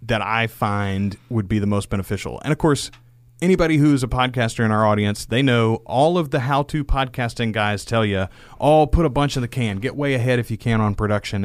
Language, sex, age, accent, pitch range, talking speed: English, male, 30-49, American, 105-125 Hz, 235 wpm